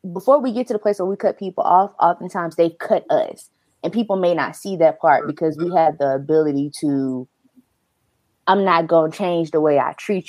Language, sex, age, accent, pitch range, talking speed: English, female, 20-39, American, 145-195 Hz, 210 wpm